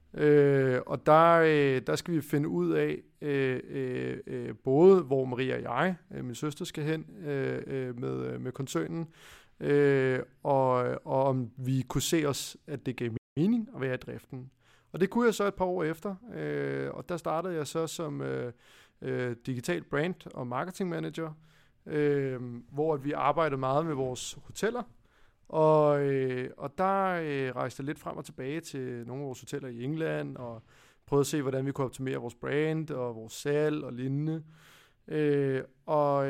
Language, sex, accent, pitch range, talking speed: Danish, male, native, 130-160 Hz, 180 wpm